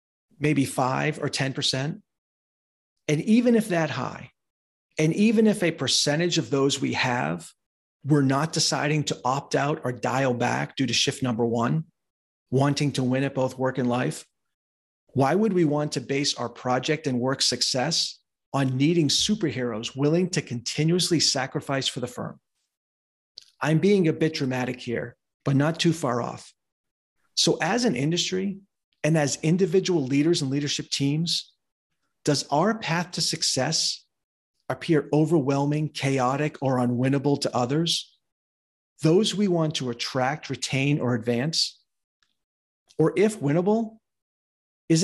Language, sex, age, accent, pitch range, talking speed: English, male, 40-59, American, 130-165 Hz, 145 wpm